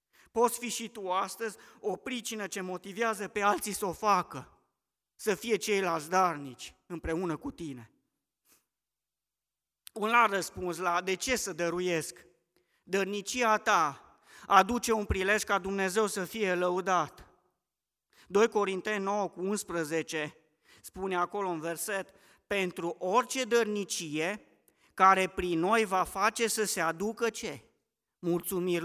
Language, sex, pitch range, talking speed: Romanian, male, 180-225 Hz, 125 wpm